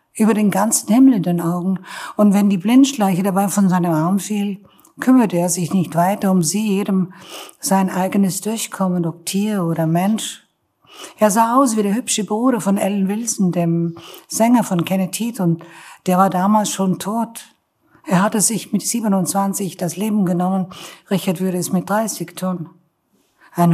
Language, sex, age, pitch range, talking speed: German, female, 60-79, 175-215 Hz, 165 wpm